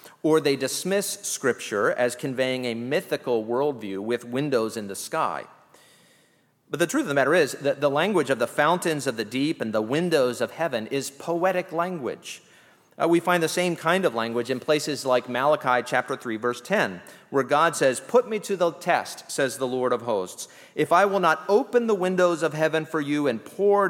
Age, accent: 40-59, American